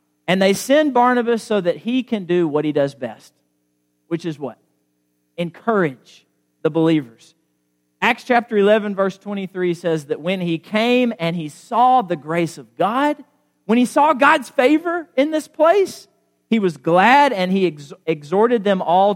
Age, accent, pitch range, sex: 40-59, American, 165-245 Hz, male